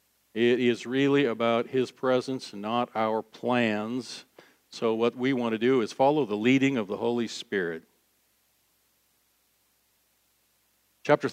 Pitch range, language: 115-140 Hz, English